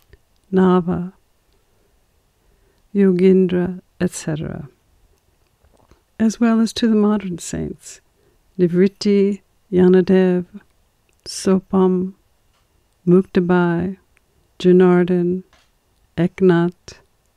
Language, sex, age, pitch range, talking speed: English, female, 60-79, 165-185 Hz, 55 wpm